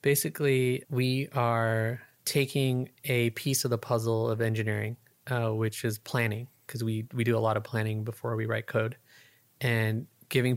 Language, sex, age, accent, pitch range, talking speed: English, male, 20-39, American, 110-130 Hz, 165 wpm